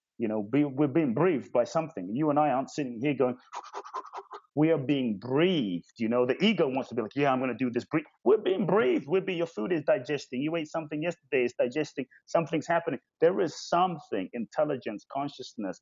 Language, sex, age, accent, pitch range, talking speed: English, male, 30-49, British, 125-155 Hz, 205 wpm